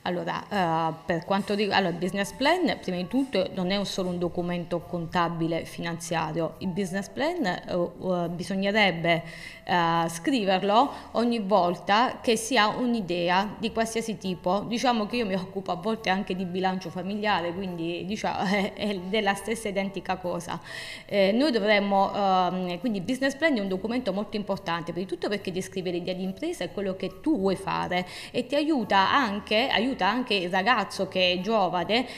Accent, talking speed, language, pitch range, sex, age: native, 175 wpm, Italian, 180-225 Hz, female, 20-39